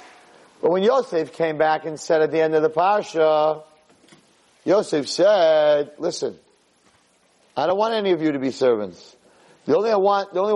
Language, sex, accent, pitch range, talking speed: English, male, American, 150-225 Hz, 175 wpm